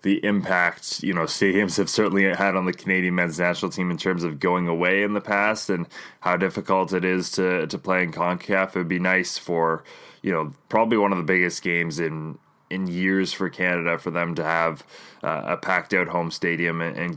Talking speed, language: 215 wpm, English